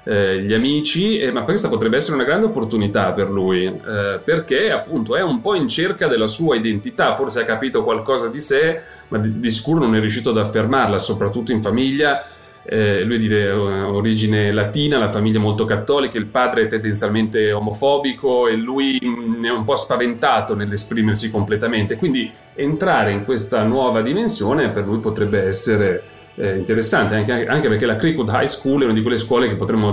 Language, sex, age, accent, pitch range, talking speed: Italian, male, 30-49, native, 105-130 Hz, 170 wpm